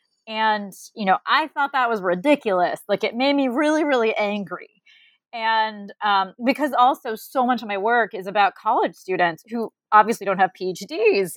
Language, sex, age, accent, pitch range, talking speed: English, female, 20-39, American, 215-280 Hz, 175 wpm